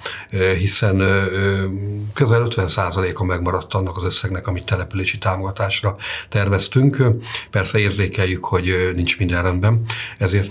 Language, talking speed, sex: Hungarian, 105 wpm, male